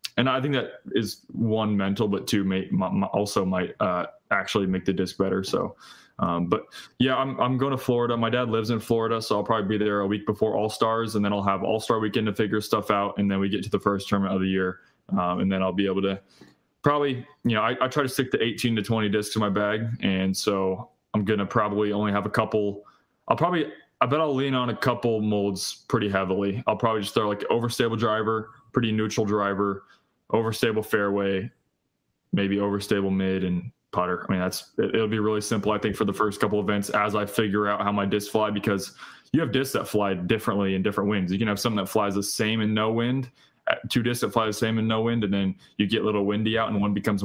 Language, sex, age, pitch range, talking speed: English, male, 20-39, 100-110 Hz, 245 wpm